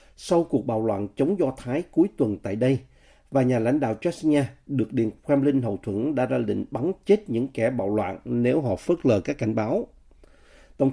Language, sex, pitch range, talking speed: Vietnamese, male, 115-150 Hz, 210 wpm